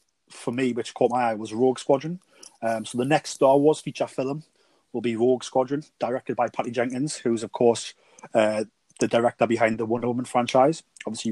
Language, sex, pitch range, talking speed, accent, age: English, male, 115-130 Hz, 195 wpm, British, 30-49